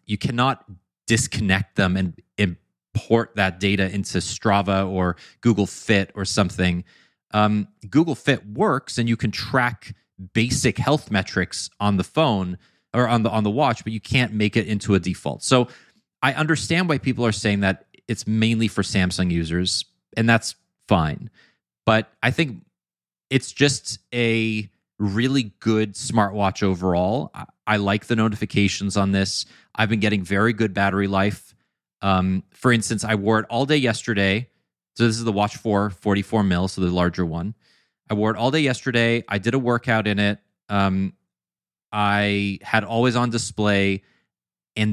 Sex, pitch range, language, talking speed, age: male, 95-115 Hz, English, 160 wpm, 30-49